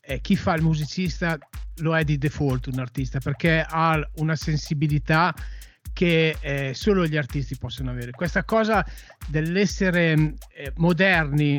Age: 40-59